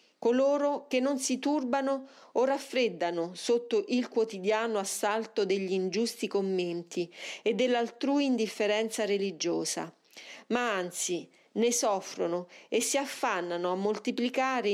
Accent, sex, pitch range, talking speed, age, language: native, female, 190-240 Hz, 110 wpm, 40-59, Italian